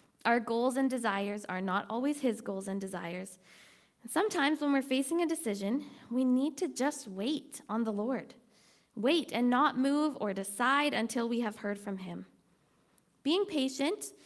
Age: 20-39